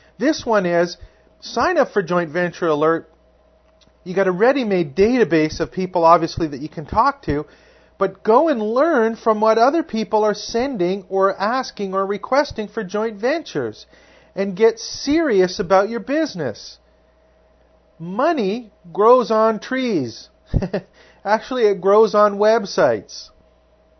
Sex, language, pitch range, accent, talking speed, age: male, English, 175-230 Hz, American, 135 wpm, 40-59